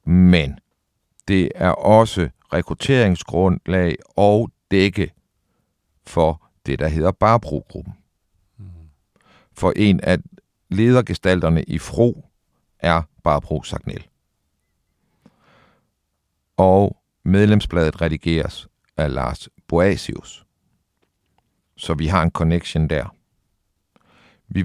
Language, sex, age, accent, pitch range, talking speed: Danish, male, 60-79, native, 80-100 Hz, 80 wpm